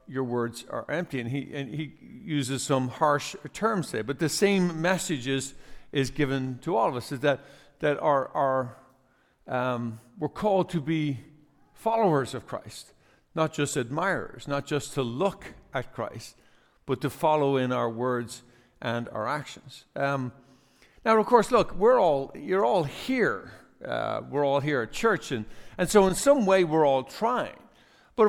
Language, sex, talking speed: English, male, 170 wpm